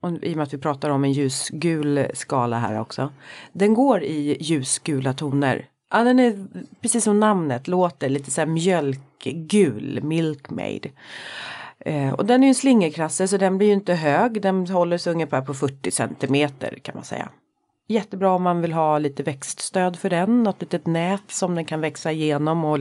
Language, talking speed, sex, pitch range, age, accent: Swedish, 185 wpm, female, 145-195 Hz, 30-49, native